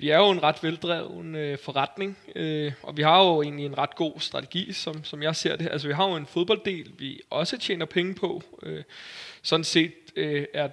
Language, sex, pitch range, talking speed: Danish, male, 145-170 Hz, 195 wpm